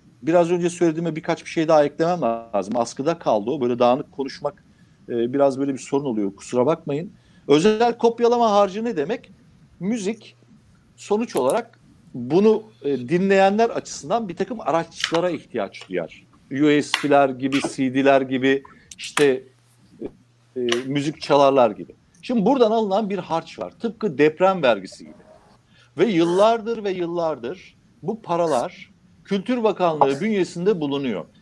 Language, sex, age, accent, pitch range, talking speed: Turkish, male, 60-79, native, 140-215 Hz, 125 wpm